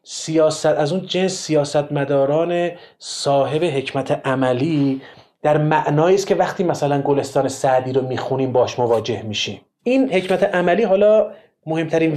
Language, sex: Persian, male